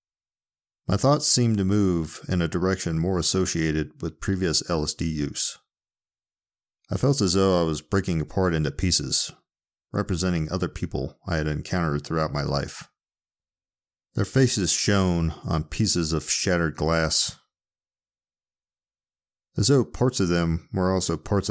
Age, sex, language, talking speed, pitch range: 40-59, male, English, 135 wpm, 80-100 Hz